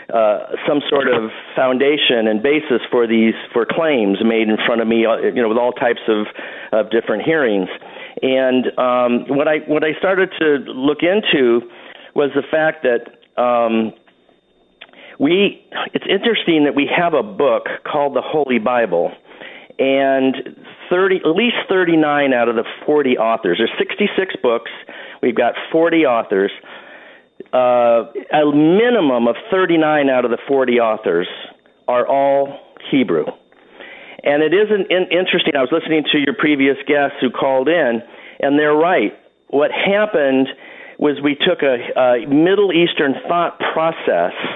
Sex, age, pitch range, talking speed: male, 50-69, 120-155 Hz, 150 wpm